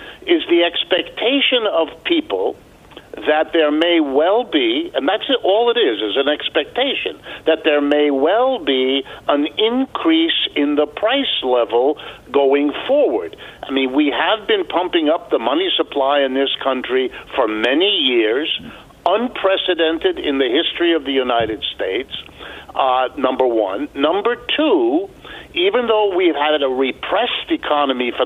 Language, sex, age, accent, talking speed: English, male, 60-79, American, 145 wpm